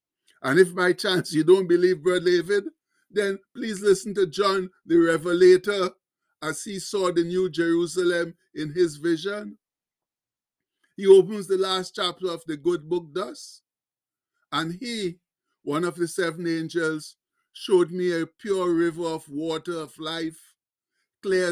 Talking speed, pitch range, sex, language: 145 wpm, 170-195 Hz, male, English